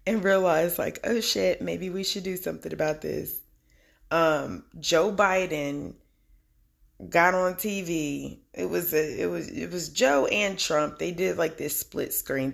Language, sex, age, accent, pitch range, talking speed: English, female, 20-39, American, 145-200 Hz, 165 wpm